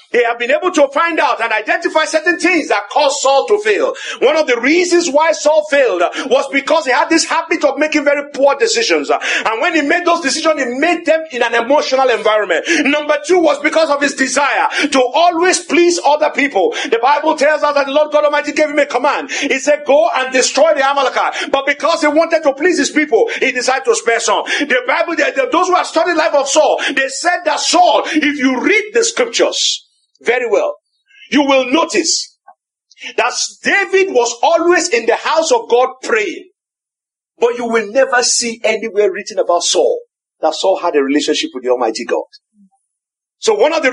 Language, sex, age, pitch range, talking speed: English, male, 50-69, 270-345 Hz, 205 wpm